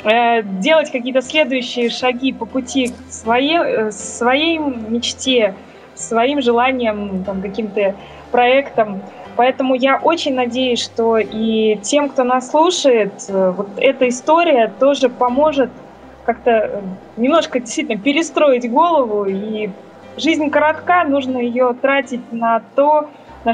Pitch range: 230-280 Hz